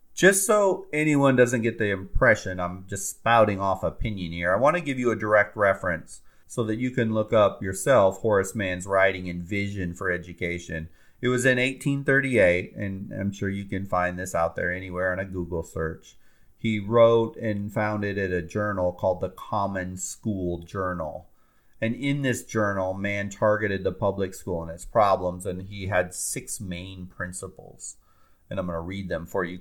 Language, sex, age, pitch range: English, male, 30-49, 90-115 Hz